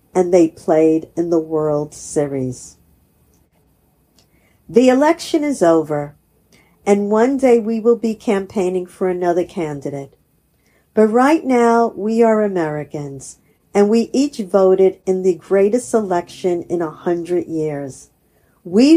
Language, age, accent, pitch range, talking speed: English, 50-69, American, 170-240 Hz, 125 wpm